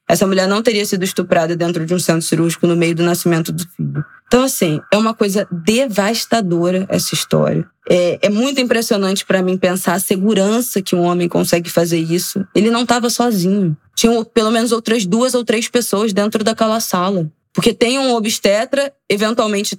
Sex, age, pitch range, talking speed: female, 20-39, 185-240 Hz, 180 wpm